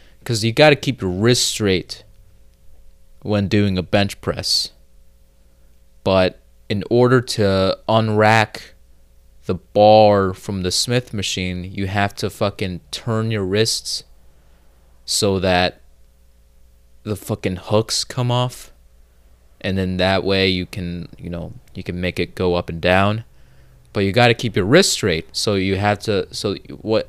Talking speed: 145 wpm